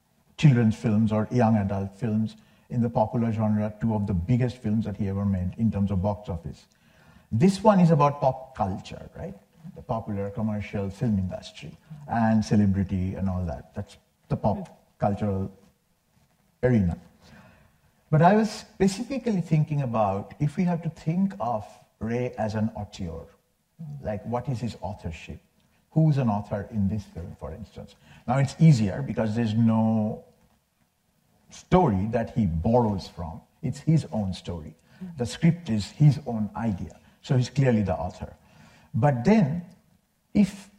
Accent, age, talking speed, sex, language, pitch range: Indian, 50-69, 155 wpm, male, English, 105-160 Hz